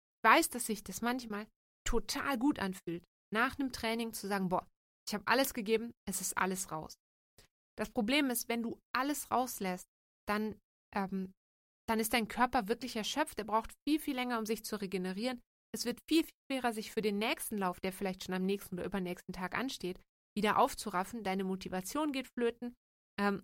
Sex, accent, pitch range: female, German, 195-240 Hz